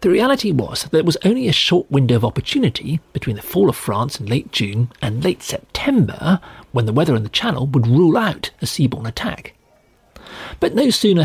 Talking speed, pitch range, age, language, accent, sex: 205 wpm, 120-175 Hz, 40-59, English, British, male